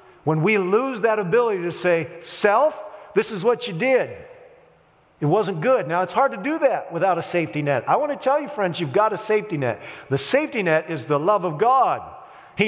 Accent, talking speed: American, 220 wpm